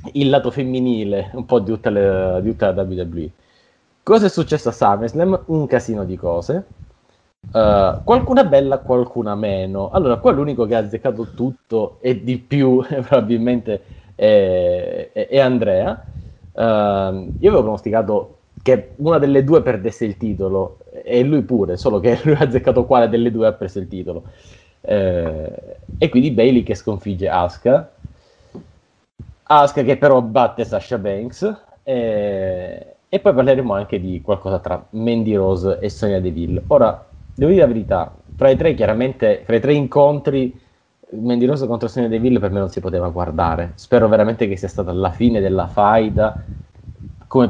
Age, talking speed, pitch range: 30-49, 155 wpm, 95-130 Hz